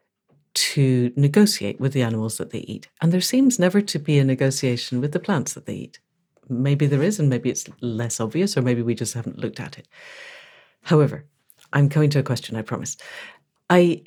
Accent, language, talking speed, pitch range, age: British, English, 200 wpm, 130-165 Hz, 60-79